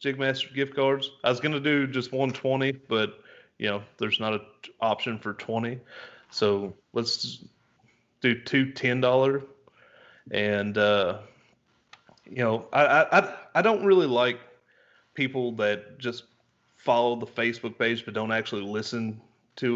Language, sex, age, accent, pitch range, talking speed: English, male, 30-49, American, 105-130 Hz, 145 wpm